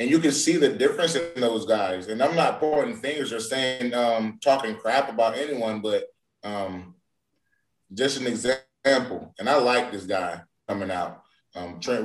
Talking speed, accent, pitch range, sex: 175 wpm, American, 110-130 Hz, male